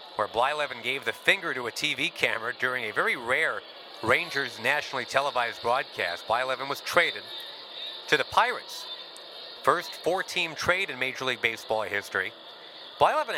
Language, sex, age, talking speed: English, male, 40-59, 145 wpm